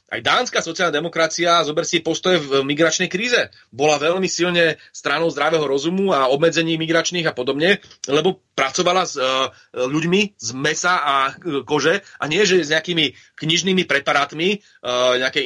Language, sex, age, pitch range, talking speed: Slovak, male, 30-49, 145-180 Hz, 145 wpm